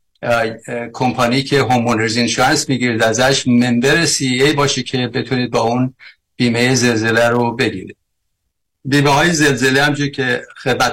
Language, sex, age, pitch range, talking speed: Persian, male, 50-69, 120-135 Hz, 125 wpm